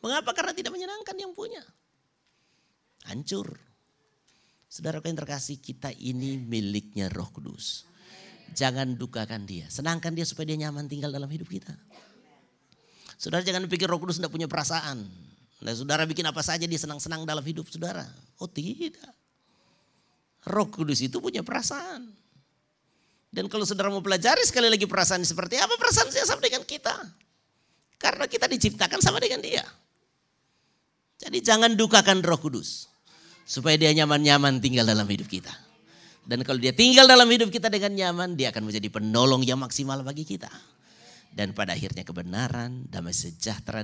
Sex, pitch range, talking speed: male, 125-190 Hz, 150 wpm